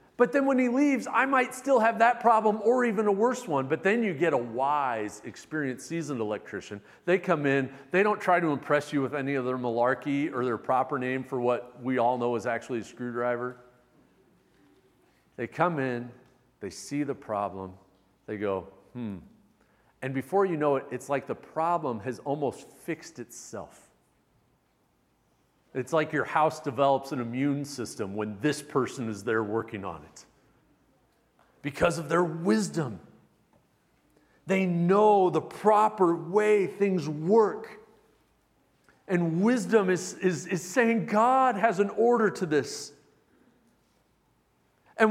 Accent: American